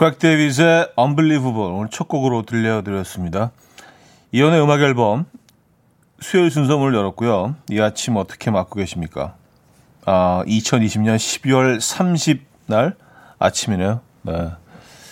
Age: 40-59